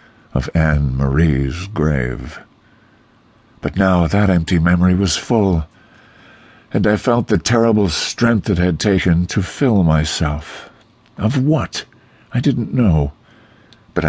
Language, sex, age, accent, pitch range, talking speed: English, male, 60-79, American, 75-95 Hz, 125 wpm